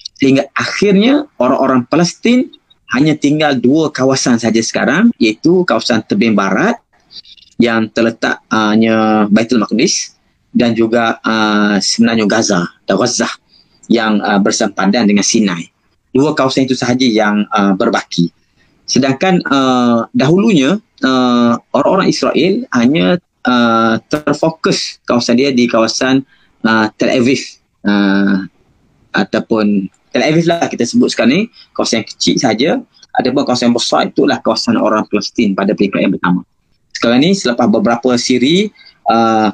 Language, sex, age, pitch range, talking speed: Malay, male, 30-49, 115-170 Hz, 125 wpm